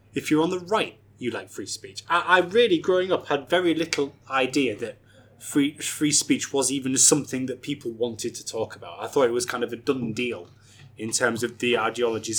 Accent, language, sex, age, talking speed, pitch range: British, English, male, 20-39, 220 wpm, 115-145 Hz